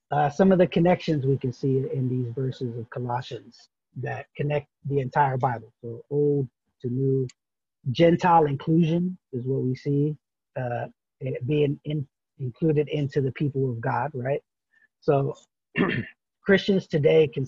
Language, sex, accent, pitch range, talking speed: English, male, American, 120-145 Hz, 150 wpm